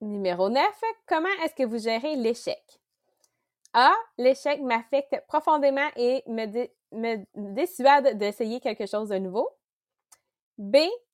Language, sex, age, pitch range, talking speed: English, female, 20-39, 215-285 Hz, 120 wpm